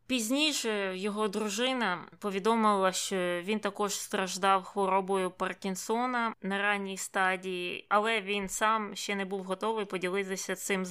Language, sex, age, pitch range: Ukrainian, female, 20-39, 185-215 Hz